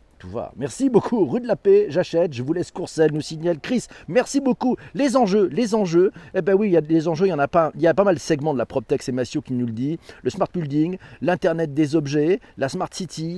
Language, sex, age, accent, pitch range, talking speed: French, male, 40-59, French, 130-190 Hz, 270 wpm